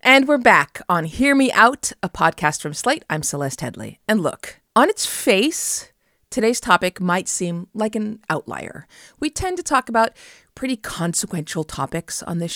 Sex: female